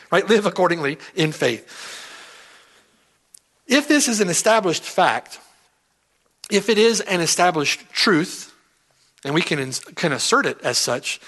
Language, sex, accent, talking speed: English, male, American, 140 wpm